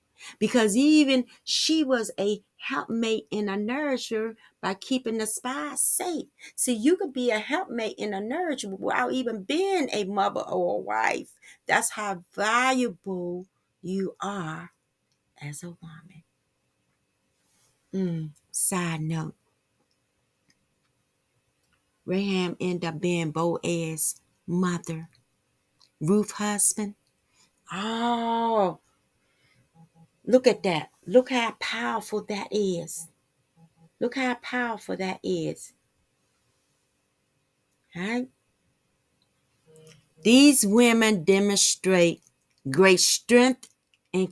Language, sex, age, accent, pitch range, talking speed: English, female, 40-59, American, 165-230 Hz, 95 wpm